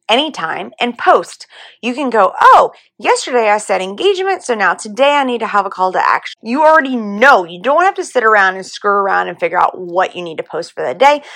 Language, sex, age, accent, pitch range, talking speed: English, female, 30-49, American, 190-280 Hz, 240 wpm